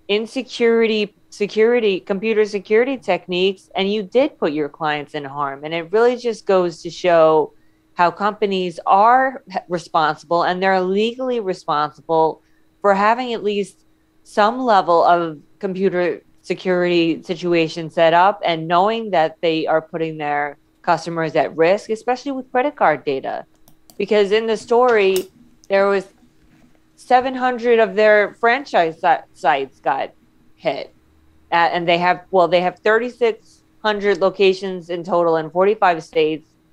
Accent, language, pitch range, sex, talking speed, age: American, English, 170-220 Hz, female, 135 wpm, 30-49